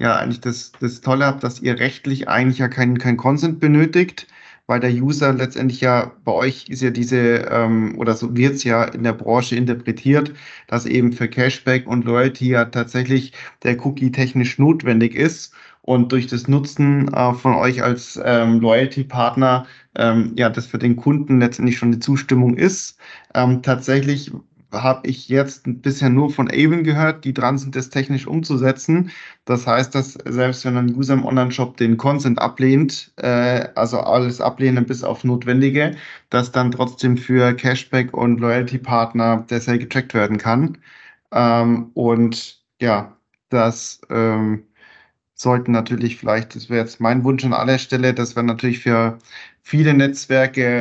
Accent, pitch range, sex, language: German, 120-135 Hz, male, German